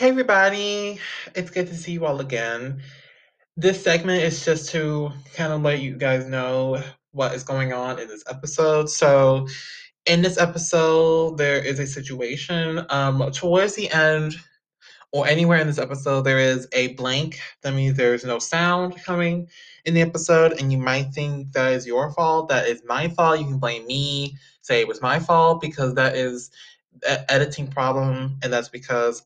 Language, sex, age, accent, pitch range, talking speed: English, male, 20-39, American, 130-165 Hz, 175 wpm